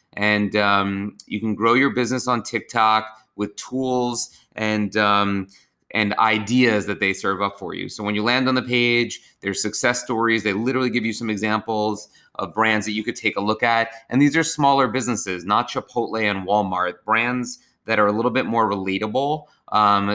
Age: 30-49